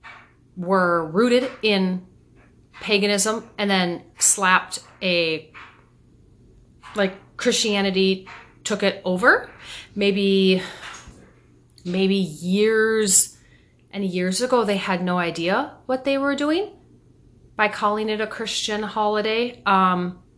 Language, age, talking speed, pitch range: English, 30-49, 100 wpm, 175-220 Hz